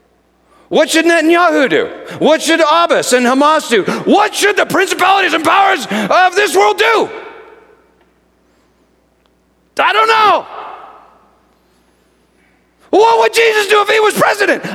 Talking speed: 125 wpm